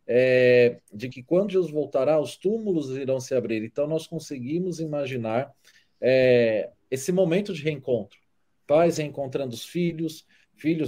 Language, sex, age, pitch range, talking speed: Portuguese, male, 40-59, 125-175 Hz, 140 wpm